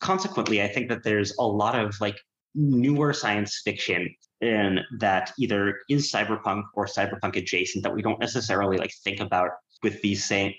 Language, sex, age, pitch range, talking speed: English, male, 30-49, 95-120 Hz, 170 wpm